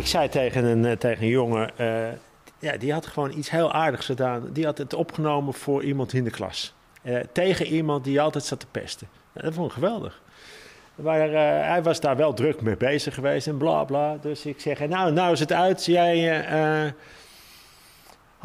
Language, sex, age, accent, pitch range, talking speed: Dutch, male, 50-69, Dutch, 140-175 Hz, 200 wpm